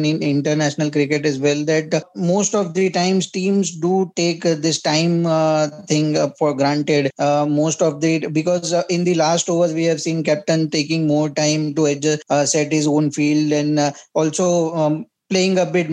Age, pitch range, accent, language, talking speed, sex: 20-39, 150-170 Hz, Indian, English, 190 wpm, male